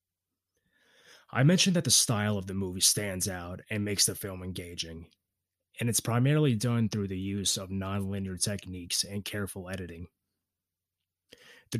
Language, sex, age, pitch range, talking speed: English, male, 20-39, 95-115 Hz, 145 wpm